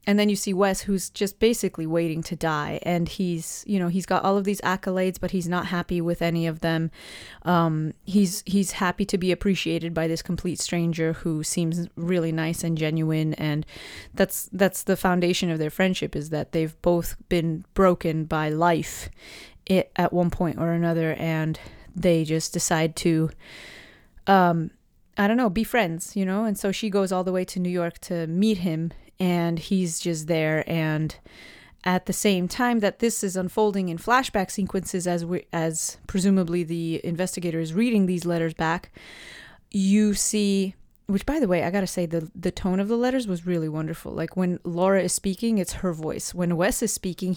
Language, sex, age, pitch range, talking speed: English, female, 20-39, 165-195 Hz, 190 wpm